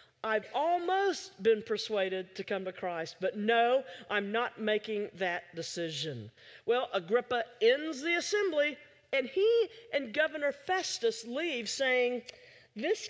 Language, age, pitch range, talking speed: English, 50-69, 200-315 Hz, 130 wpm